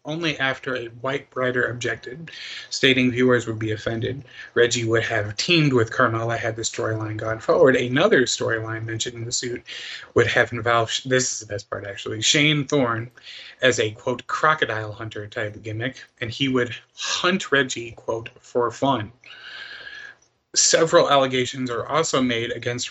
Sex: male